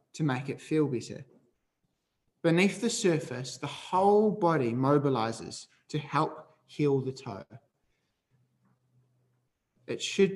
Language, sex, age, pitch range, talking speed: English, male, 20-39, 130-170 Hz, 110 wpm